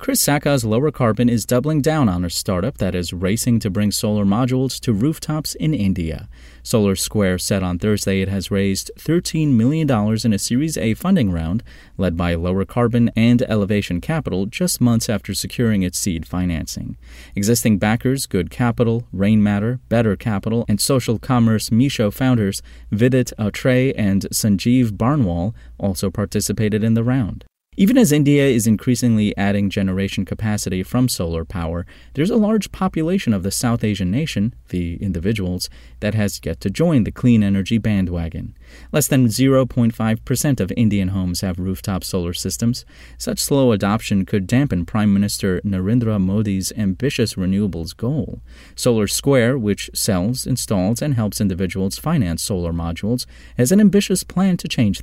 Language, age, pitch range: English, 30-49, 95-125 Hz